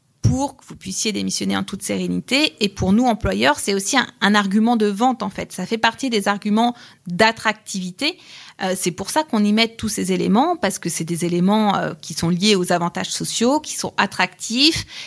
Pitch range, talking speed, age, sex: 185-220 Hz, 205 wpm, 30-49, female